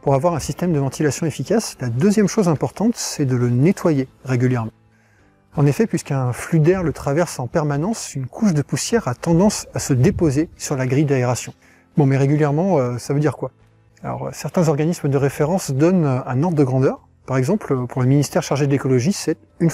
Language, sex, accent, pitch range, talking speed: French, male, French, 130-160 Hz, 200 wpm